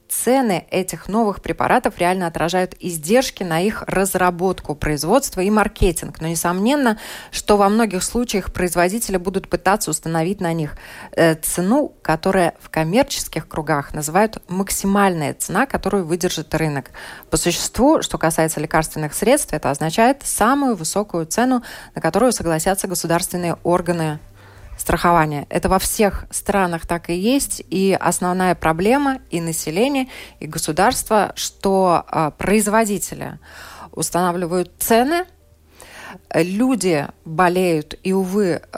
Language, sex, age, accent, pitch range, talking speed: Russian, female, 20-39, native, 160-205 Hz, 115 wpm